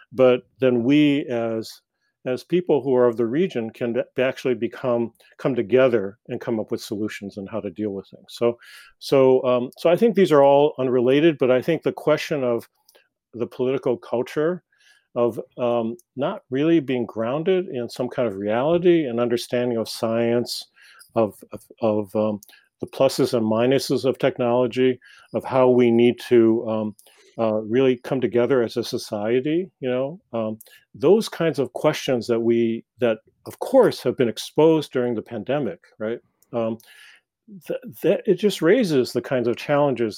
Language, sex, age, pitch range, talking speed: English, male, 50-69, 115-135 Hz, 170 wpm